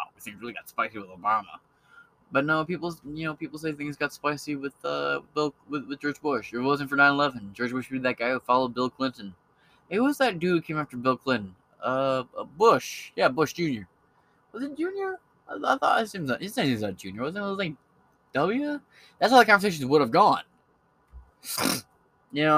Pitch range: 110-175 Hz